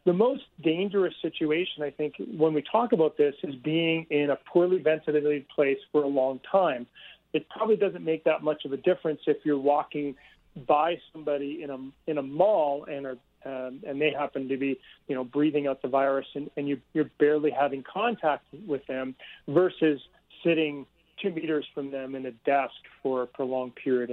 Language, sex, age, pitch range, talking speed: English, male, 40-59, 140-165 Hz, 190 wpm